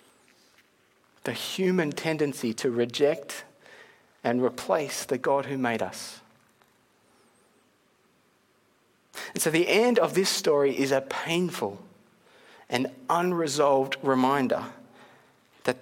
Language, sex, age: English, male, 40-59